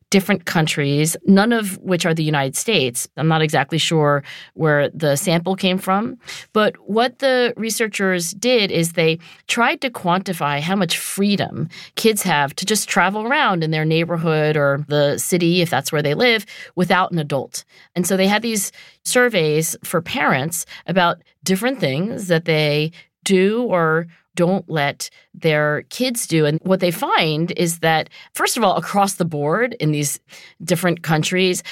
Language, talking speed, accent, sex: English, 165 wpm, American, female